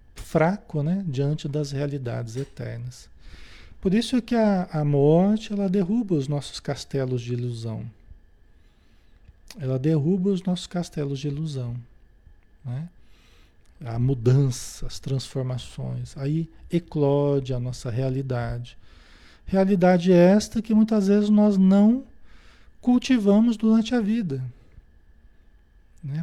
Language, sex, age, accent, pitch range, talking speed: Portuguese, male, 40-59, Brazilian, 125-190 Hz, 110 wpm